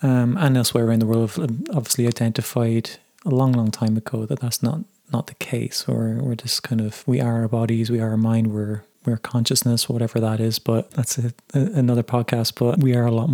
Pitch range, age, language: 115-125 Hz, 20-39, English